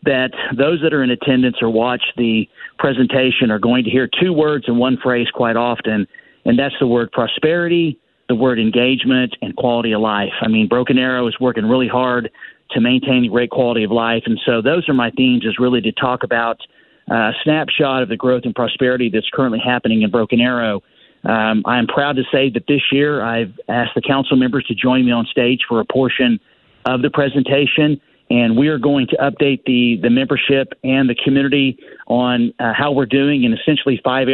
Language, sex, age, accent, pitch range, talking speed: English, male, 40-59, American, 120-140 Hz, 205 wpm